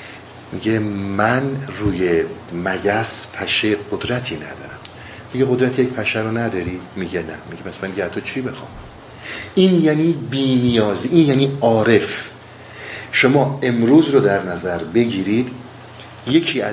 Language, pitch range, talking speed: Persian, 110-145 Hz, 120 wpm